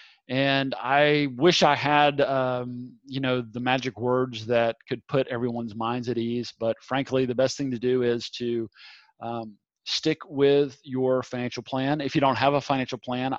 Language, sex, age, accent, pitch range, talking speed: English, male, 40-59, American, 125-145 Hz, 180 wpm